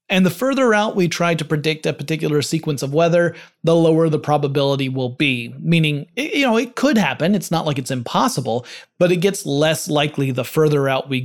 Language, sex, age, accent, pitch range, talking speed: English, male, 30-49, American, 140-175 Hz, 210 wpm